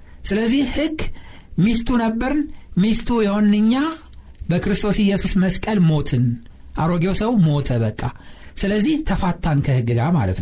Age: 60-79